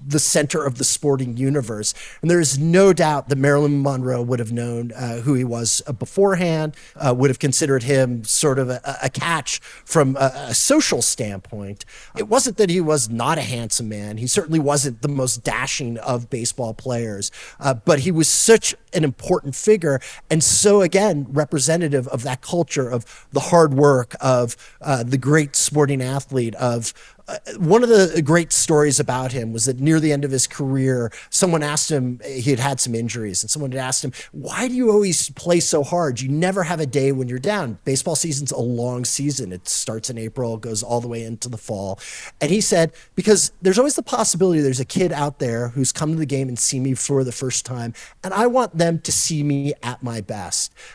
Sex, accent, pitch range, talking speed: male, American, 125-160 Hz, 205 wpm